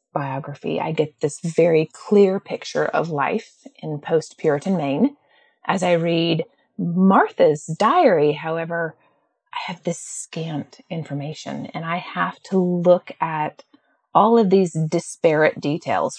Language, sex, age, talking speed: English, female, 30-49, 125 wpm